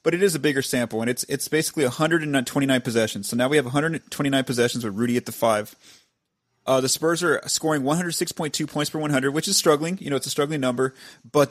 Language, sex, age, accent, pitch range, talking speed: English, male, 30-49, American, 120-145 Hz, 220 wpm